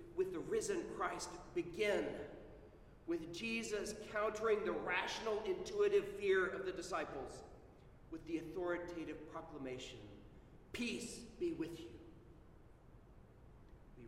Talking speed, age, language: 100 wpm, 40-59, English